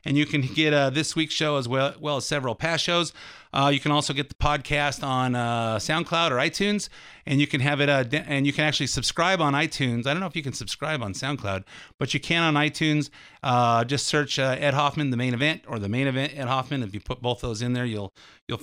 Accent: American